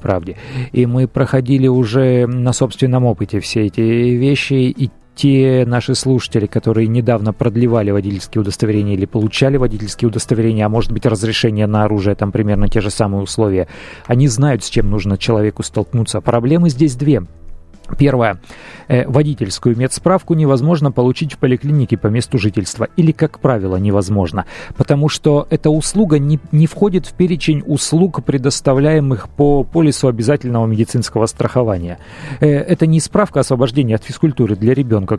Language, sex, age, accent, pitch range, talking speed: Russian, male, 30-49, native, 115-155 Hz, 145 wpm